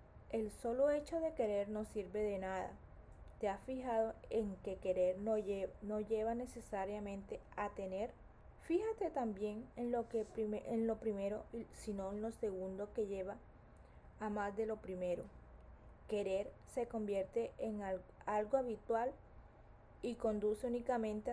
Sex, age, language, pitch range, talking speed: female, 20-39, Spanish, 195-235 Hz, 130 wpm